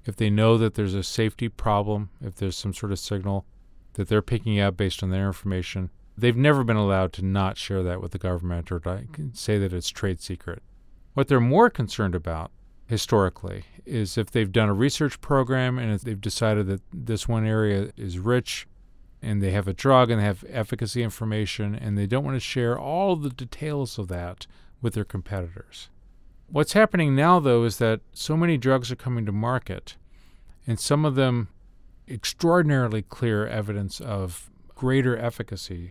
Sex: male